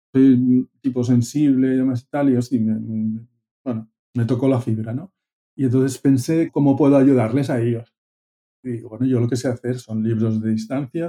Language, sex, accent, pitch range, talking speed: Spanish, male, Spanish, 115-135 Hz, 200 wpm